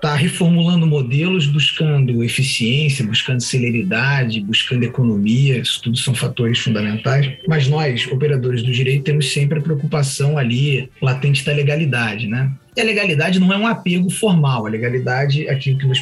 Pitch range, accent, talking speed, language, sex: 130-155 Hz, Brazilian, 155 wpm, Portuguese, male